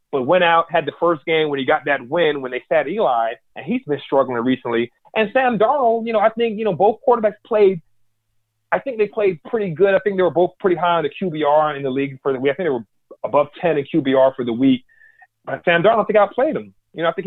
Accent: American